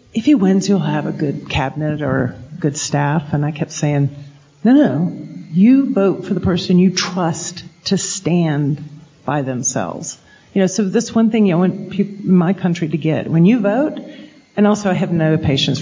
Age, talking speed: 50-69, 185 wpm